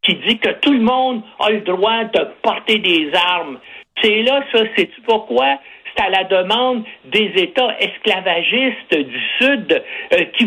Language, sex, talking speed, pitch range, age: French, male, 165 wpm, 195-265 Hz, 60-79